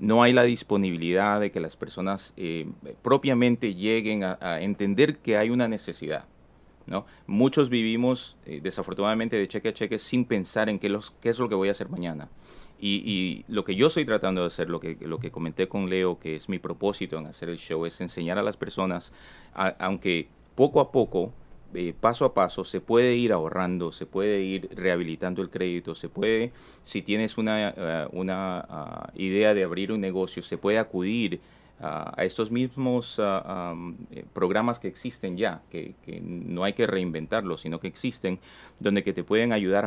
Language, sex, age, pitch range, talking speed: Spanish, male, 30-49, 90-110 Hz, 185 wpm